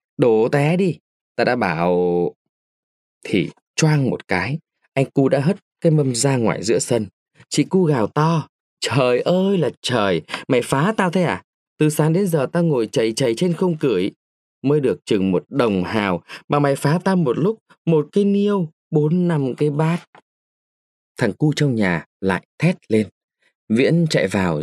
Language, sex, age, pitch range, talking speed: Vietnamese, male, 20-39, 120-170 Hz, 180 wpm